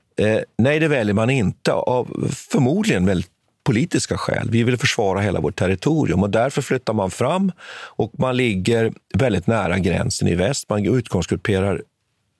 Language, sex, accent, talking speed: Swedish, male, native, 145 wpm